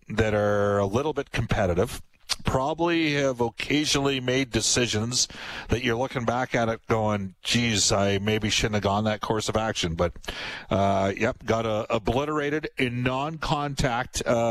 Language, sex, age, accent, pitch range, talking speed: English, male, 50-69, American, 95-120 Hz, 150 wpm